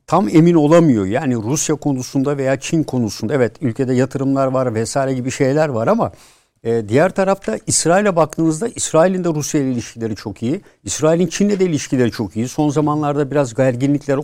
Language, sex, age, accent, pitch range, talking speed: Turkish, male, 60-79, native, 130-170 Hz, 165 wpm